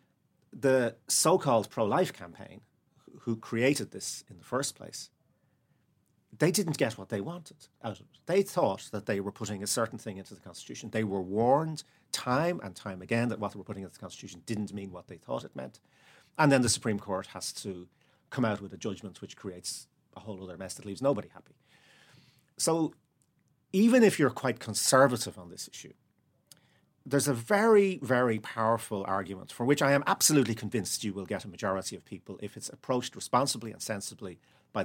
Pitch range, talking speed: 100-140 Hz, 190 wpm